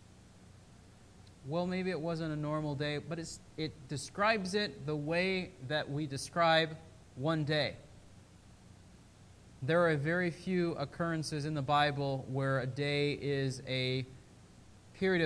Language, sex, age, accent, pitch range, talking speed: English, male, 20-39, American, 130-165 Hz, 125 wpm